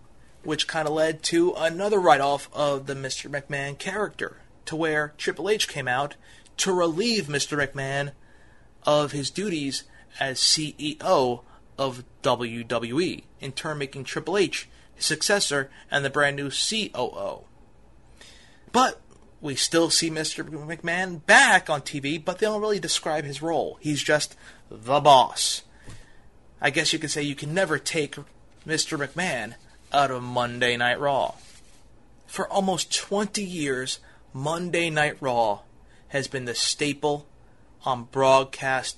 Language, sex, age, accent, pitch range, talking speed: English, male, 30-49, American, 135-165 Hz, 140 wpm